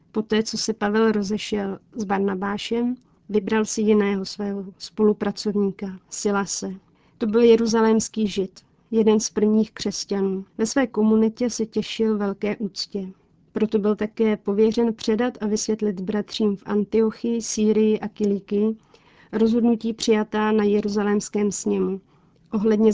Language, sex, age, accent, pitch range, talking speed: Czech, female, 40-59, native, 200-220 Hz, 125 wpm